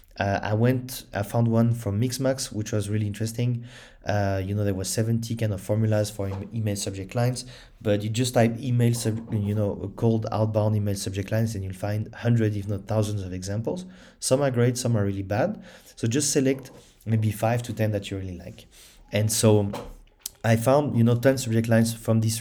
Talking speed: 205 wpm